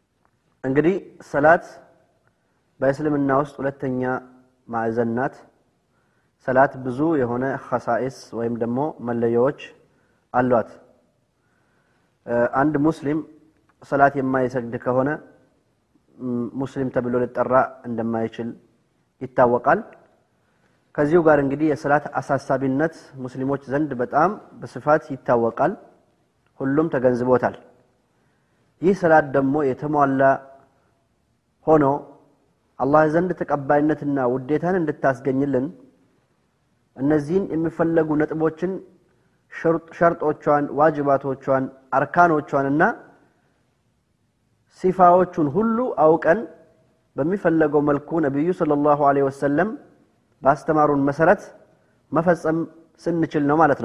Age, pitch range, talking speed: 30-49, 130-155 Hz, 75 wpm